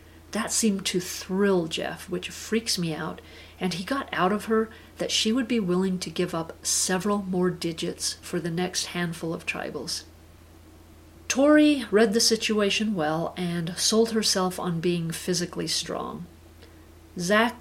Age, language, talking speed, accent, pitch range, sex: 40-59, English, 155 wpm, American, 170-210 Hz, female